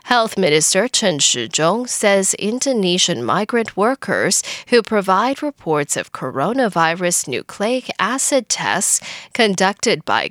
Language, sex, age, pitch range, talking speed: English, female, 10-29, 180-245 Hz, 105 wpm